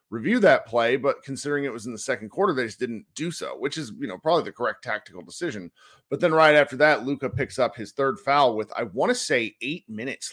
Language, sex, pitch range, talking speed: English, male, 115-145 Hz, 250 wpm